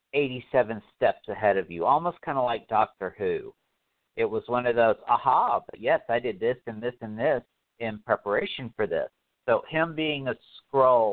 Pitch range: 110-145 Hz